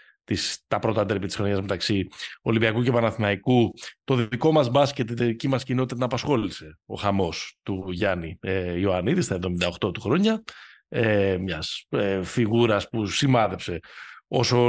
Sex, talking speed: male, 155 wpm